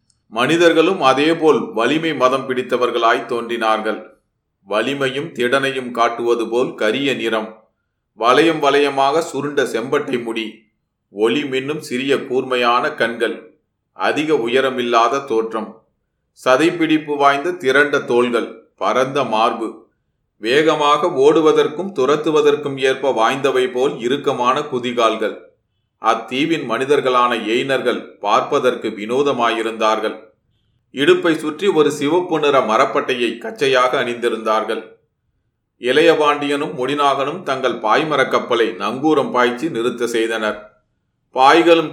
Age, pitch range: 40-59, 115-145 Hz